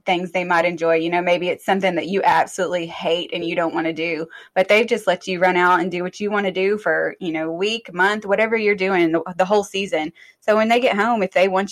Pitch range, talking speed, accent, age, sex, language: 165-195 Hz, 265 wpm, American, 20-39, female, English